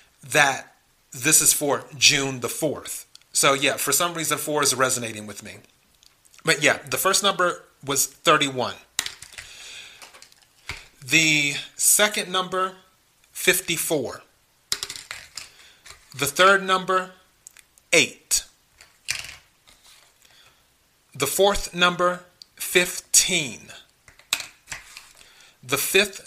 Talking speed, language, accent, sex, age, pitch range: 85 wpm, English, American, male, 40-59, 140-185 Hz